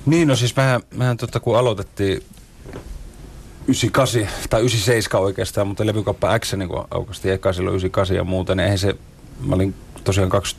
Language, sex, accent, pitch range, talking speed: Finnish, male, native, 95-120 Hz, 145 wpm